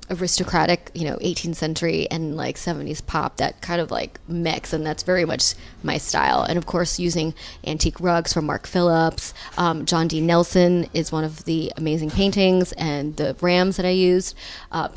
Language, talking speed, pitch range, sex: English, 175 wpm, 160-180 Hz, female